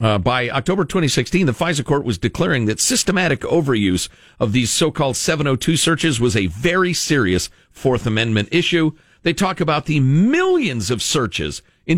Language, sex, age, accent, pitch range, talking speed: English, male, 50-69, American, 115-175 Hz, 160 wpm